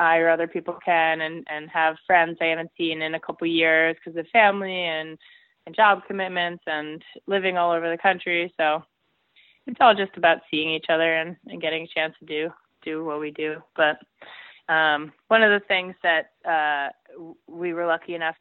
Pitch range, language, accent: 165-195 Hz, English, American